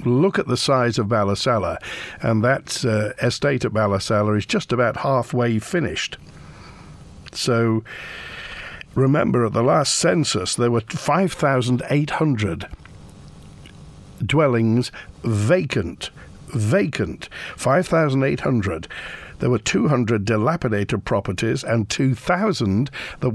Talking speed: 100 wpm